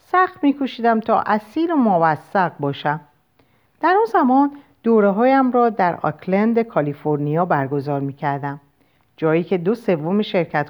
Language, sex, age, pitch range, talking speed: Persian, female, 50-69, 150-240 Hz, 130 wpm